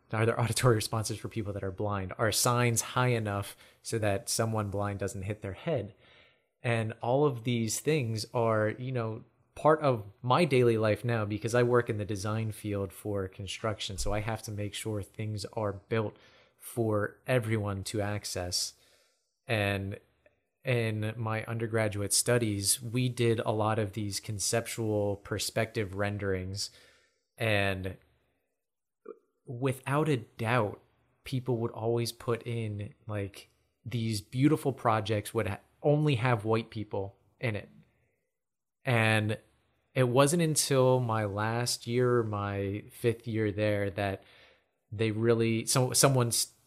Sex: male